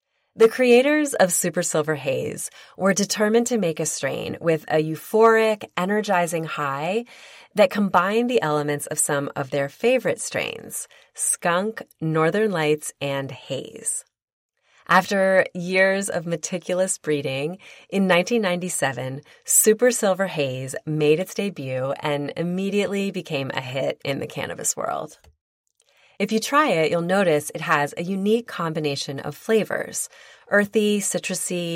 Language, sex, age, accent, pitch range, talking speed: English, female, 30-49, American, 150-200 Hz, 130 wpm